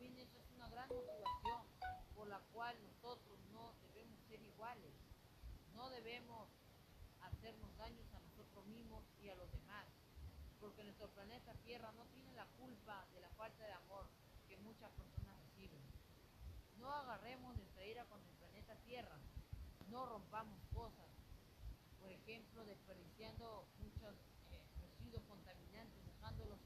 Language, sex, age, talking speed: Spanish, female, 40-59, 135 wpm